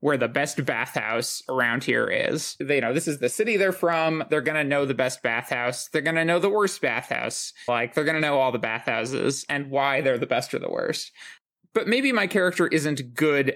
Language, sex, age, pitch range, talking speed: English, male, 20-39, 130-170 Hz, 225 wpm